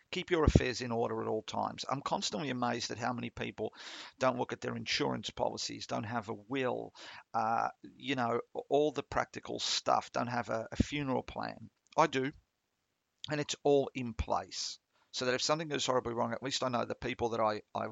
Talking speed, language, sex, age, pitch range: 205 wpm, English, male, 50-69, 115-140 Hz